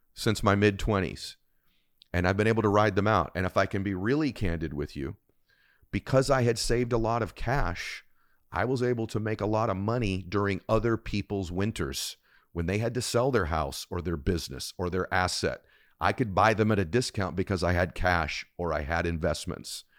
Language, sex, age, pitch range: English, male, 40-59, 90-120 Hz